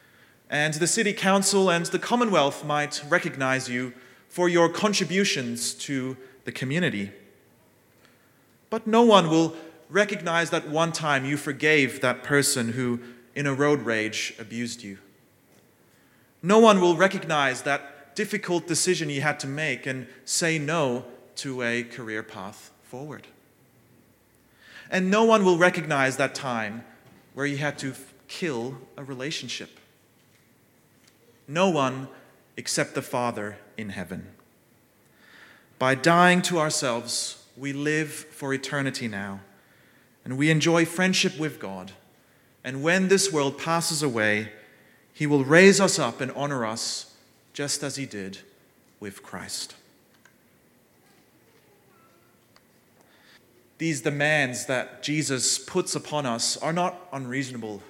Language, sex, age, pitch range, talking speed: English, male, 30-49, 120-165 Hz, 125 wpm